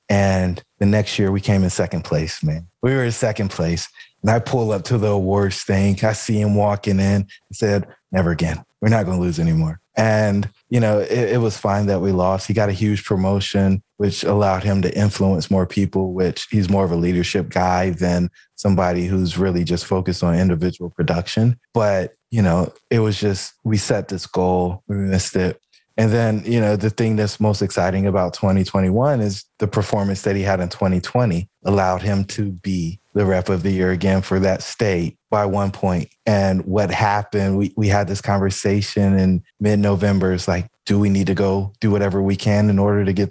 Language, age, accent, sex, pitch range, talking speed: English, 20-39, American, male, 95-105 Hz, 205 wpm